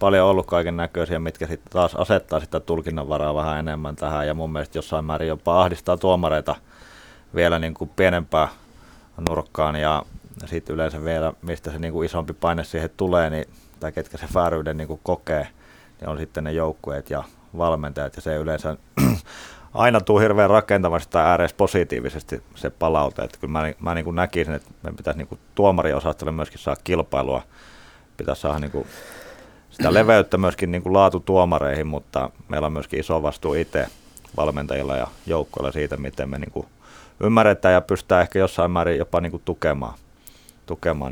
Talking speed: 160 wpm